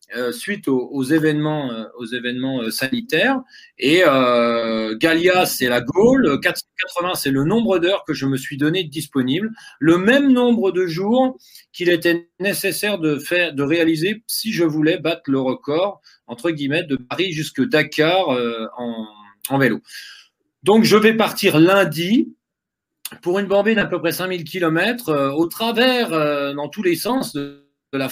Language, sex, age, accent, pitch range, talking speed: French, male, 40-59, French, 140-200 Hz, 170 wpm